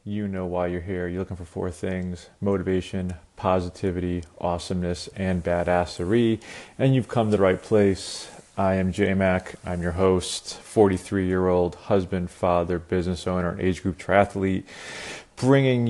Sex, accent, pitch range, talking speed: male, American, 90-105 Hz, 145 wpm